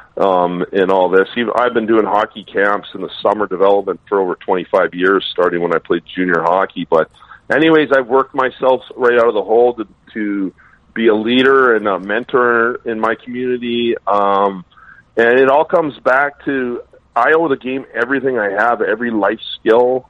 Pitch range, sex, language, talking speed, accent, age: 105-125 Hz, male, English, 180 wpm, American, 40-59